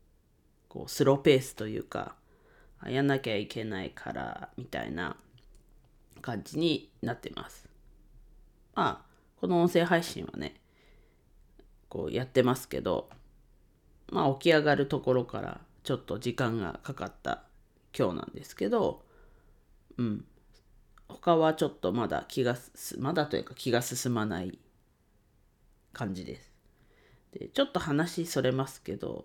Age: 40-59